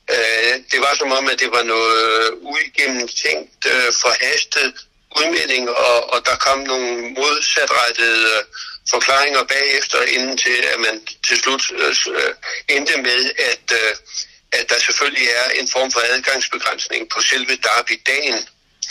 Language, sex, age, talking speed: Danish, male, 60-79, 125 wpm